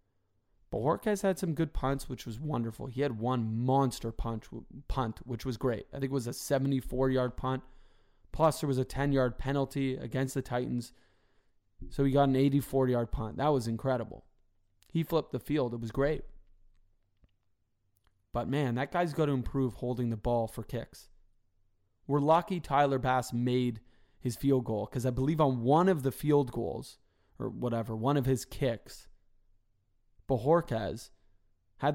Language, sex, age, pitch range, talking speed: English, male, 20-39, 110-145 Hz, 160 wpm